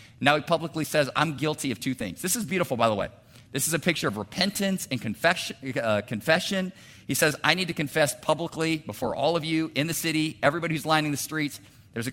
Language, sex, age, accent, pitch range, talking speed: English, male, 50-69, American, 120-160 Hz, 220 wpm